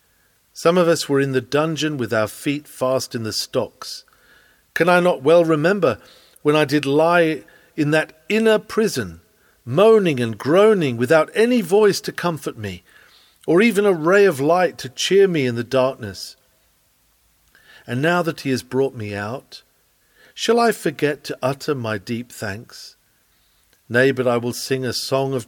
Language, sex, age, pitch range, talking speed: English, male, 50-69, 125-185 Hz, 170 wpm